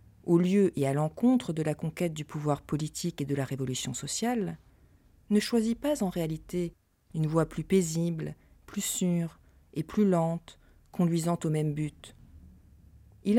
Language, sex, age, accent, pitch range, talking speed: French, female, 40-59, French, 145-190 Hz, 155 wpm